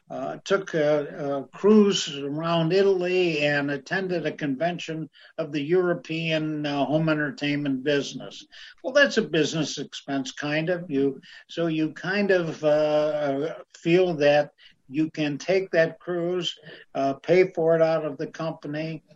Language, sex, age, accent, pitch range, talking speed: English, male, 60-79, American, 145-175 Hz, 145 wpm